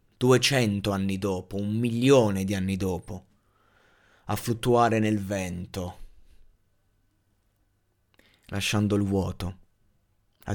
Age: 20-39